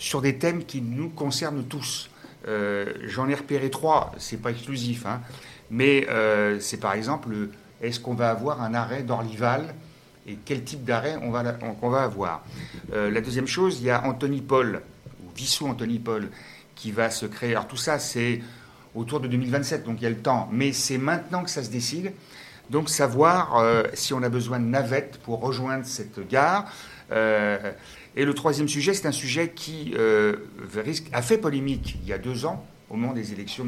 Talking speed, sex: 195 wpm, male